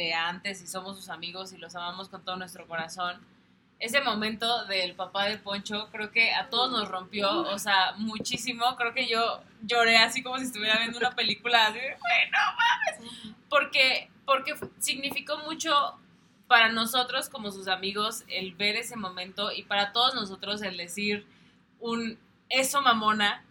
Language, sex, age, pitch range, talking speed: Spanish, female, 20-39, 190-235 Hz, 160 wpm